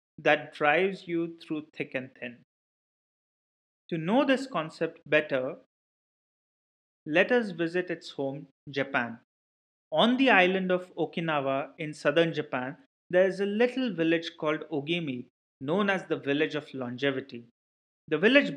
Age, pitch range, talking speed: 30-49, 150-185 Hz, 135 wpm